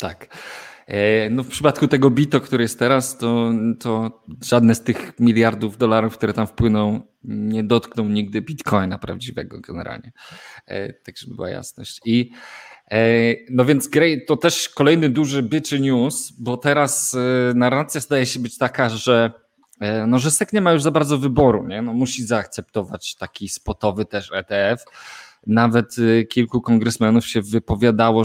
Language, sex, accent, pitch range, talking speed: Polish, male, native, 115-145 Hz, 145 wpm